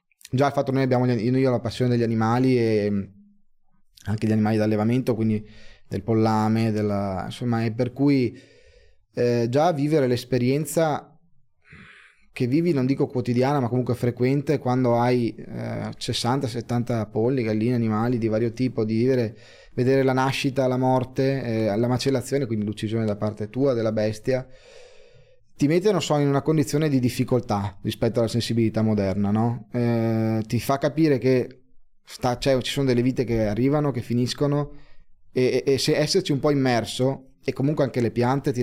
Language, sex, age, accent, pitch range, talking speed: Italian, male, 20-39, native, 110-135 Hz, 165 wpm